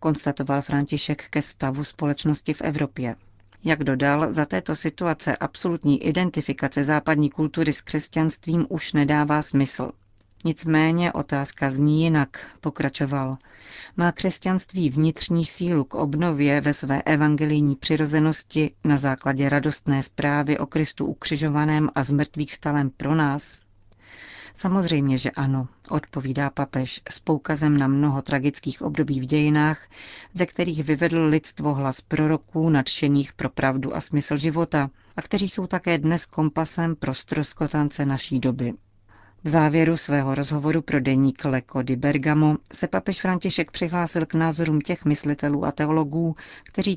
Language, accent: Czech, native